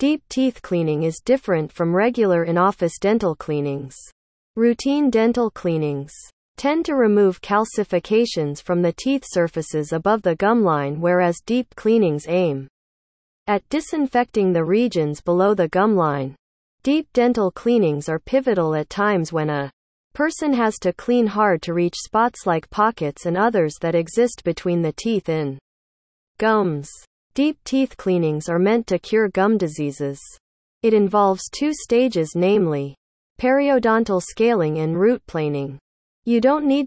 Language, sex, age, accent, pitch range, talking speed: English, female, 40-59, American, 160-230 Hz, 140 wpm